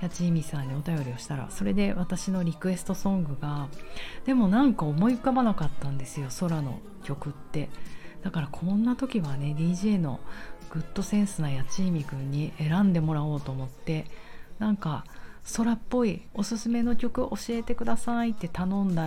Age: 40-59